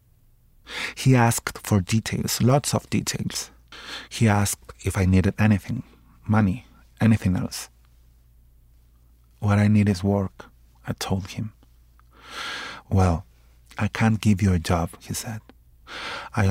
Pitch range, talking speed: 90-110 Hz, 125 wpm